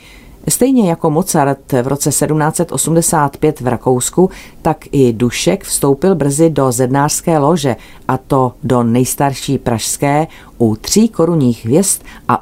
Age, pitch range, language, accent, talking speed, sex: 40-59, 125-155 Hz, Czech, native, 125 wpm, female